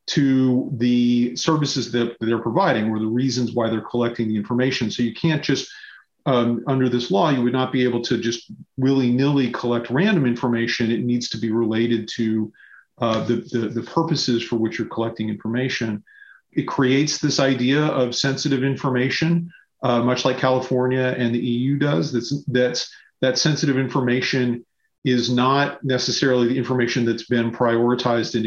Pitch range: 115-130 Hz